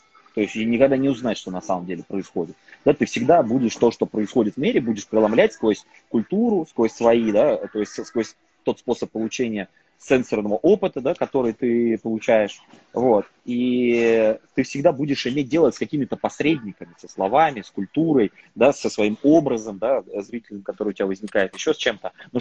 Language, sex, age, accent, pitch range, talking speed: Russian, male, 20-39, native, 115-170 Hz, 175 wpm